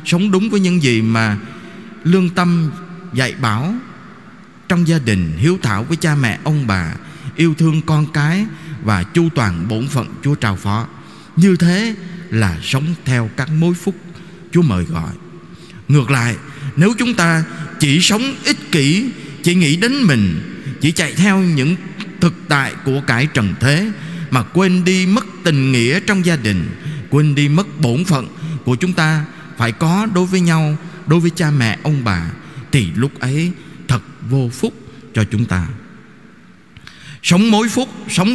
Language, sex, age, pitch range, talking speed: Vietnamese, male, 20-39, 125-180 Hz, 165 wpm